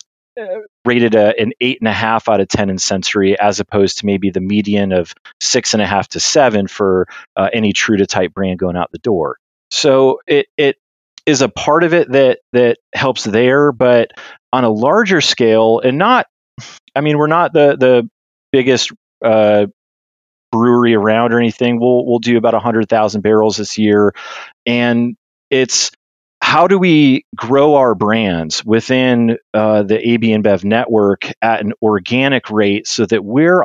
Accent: American